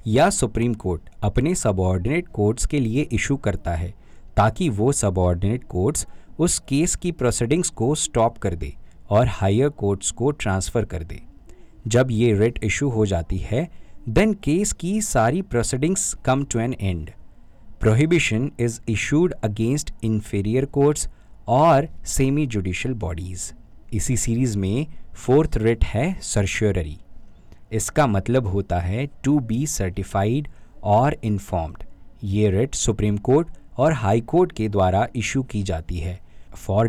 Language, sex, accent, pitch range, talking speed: Hindi, male, native, 100-140 Hz, 140 wpm